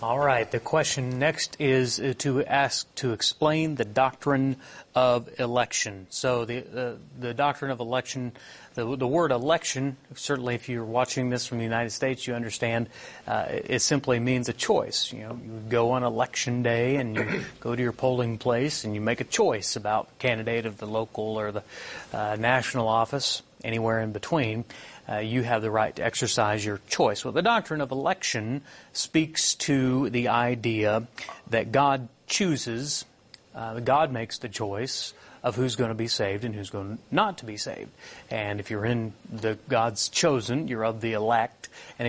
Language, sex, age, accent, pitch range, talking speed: English, male, 30-49, American, 115-140 Hz, 180 wpm